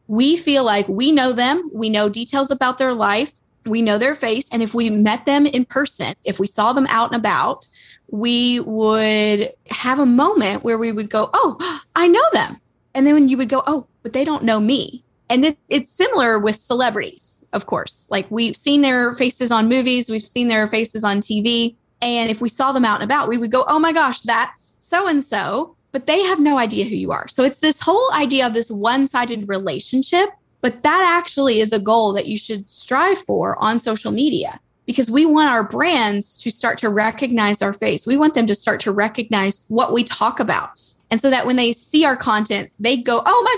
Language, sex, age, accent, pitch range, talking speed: English, female, 20-39, American, 220-285 Hz, 215 wpm